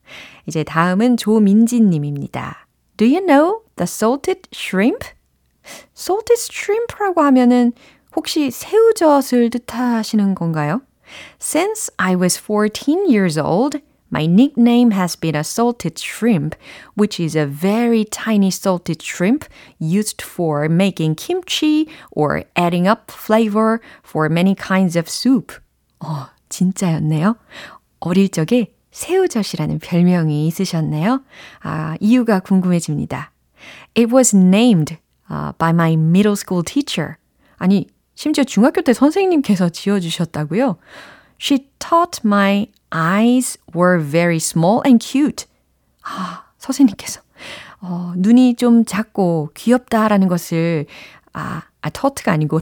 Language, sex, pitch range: Korean, female, 170-250 Hz